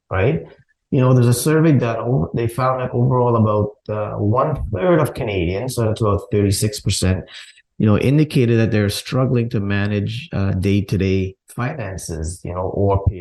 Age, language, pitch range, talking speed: 30-49, English, 95-125 Hz, 170 wpm